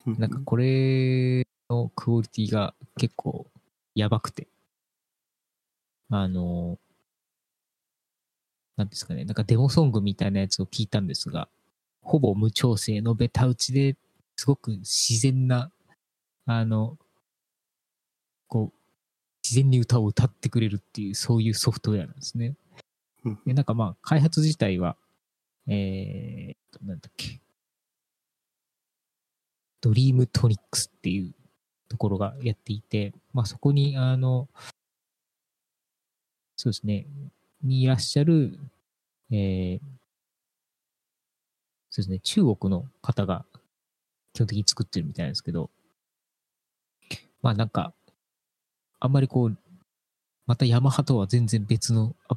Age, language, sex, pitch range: 20-39, Japanese, male, 105-130 Hz